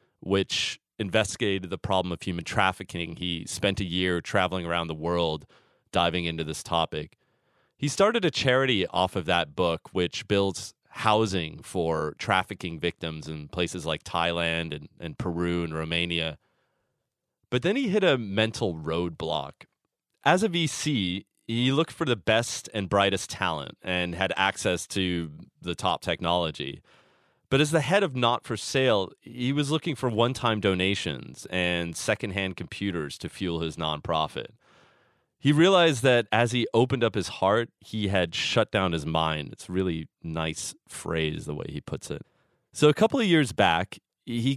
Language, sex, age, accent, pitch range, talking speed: English, male, 30-49, American, 85-120 Hz, 160 wpm